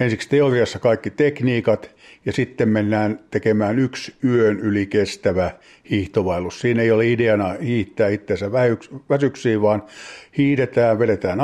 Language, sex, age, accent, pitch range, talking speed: Finnish, male, 50-69, native, 95-115 Hz, 120 wpm